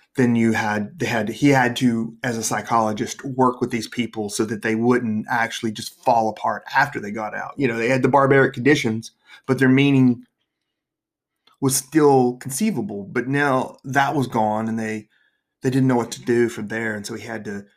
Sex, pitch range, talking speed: male, 110-130 Hz, 205 wpm